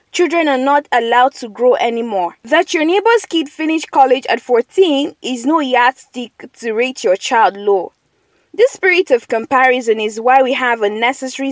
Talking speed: 165 wpm